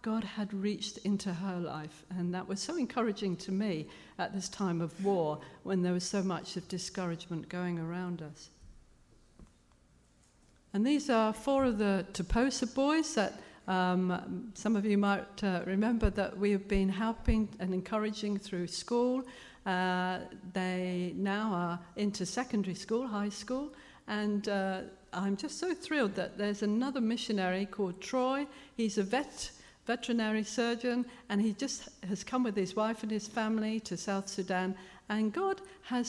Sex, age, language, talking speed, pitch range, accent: female, 50-69, English, 160 wpm, 185-220 Hz, British